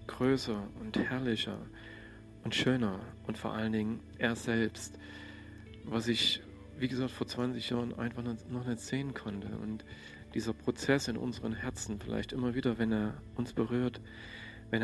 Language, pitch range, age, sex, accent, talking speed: German, 105-120 Hz, 40-59, male, German, 150 wpm